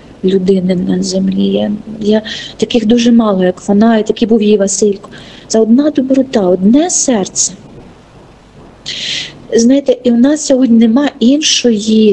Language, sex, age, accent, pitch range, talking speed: Ukrainian, female, 40-59, native, 200-245 Hz, 135 wpm